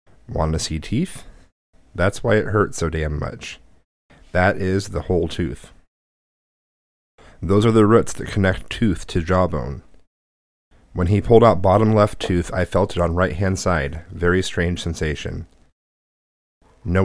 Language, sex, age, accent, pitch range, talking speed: English, male, 30-49, American, 80-105 Hz, 150 wpm